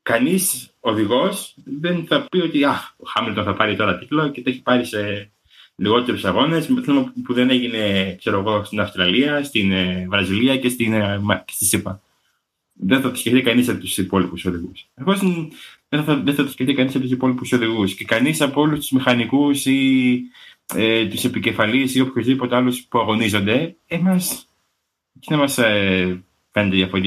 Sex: male